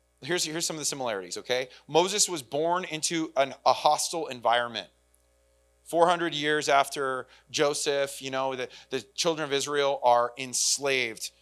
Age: 30-49